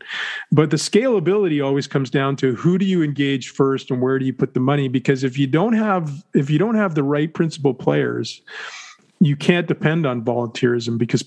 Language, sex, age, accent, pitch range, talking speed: English, male, 40-59, American, 125-155 Hz, 200 wpm